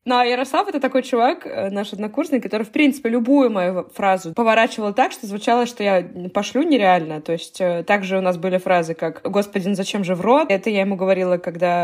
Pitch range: 190-250 Hz